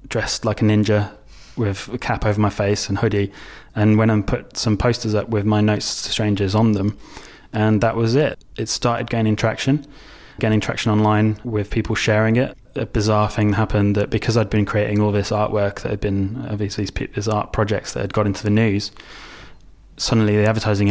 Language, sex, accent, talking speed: English, male, British, 200 wpm